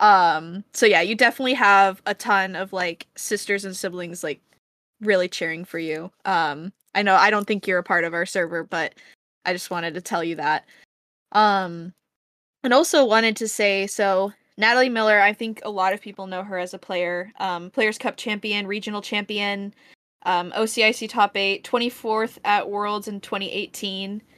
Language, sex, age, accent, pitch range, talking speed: English, female, 10-29, American, 185-220 Hz, 180 wpm